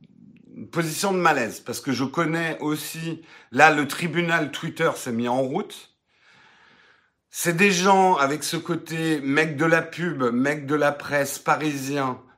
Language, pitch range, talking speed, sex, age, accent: French, 120-165 Hz, 150 wpm, male, 50-69, French